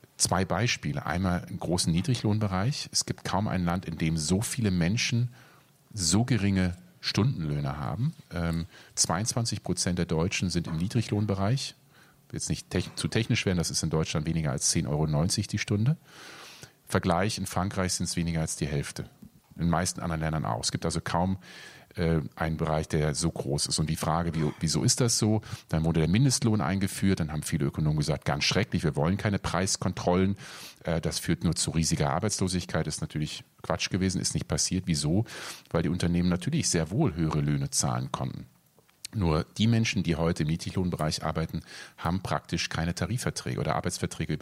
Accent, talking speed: German, 175 wpm